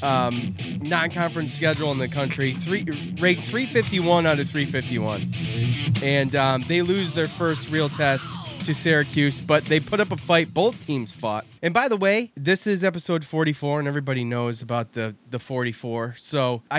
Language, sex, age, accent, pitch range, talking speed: English, male, 20-39, American, 125-170 Hz, 170 wpm